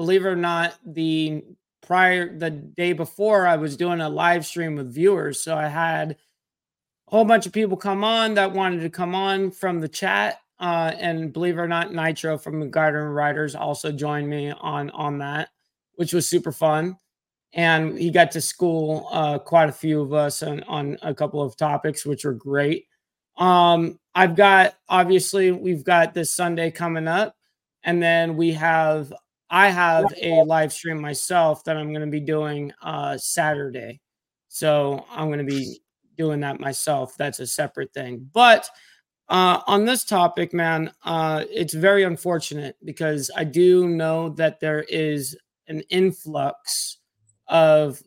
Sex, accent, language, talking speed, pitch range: male, American, English, 170 wpm, 150-175 Hz